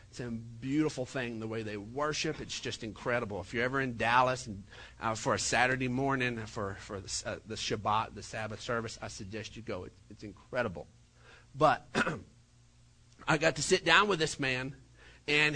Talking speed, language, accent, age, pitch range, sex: 185 wpm, English, American, 40-59, 125-185 Hz, male